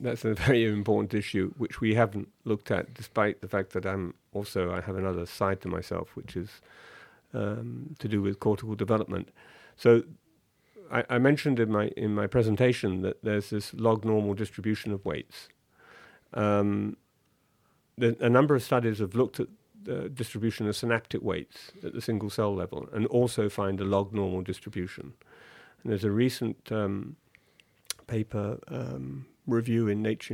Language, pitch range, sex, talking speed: English, 100-120 Hz, male, 165 wpm